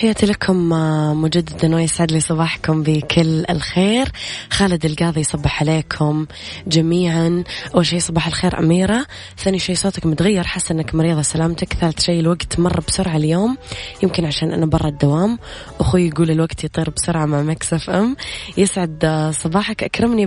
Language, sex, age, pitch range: Arabic, female, 20-39, 155-185 Hz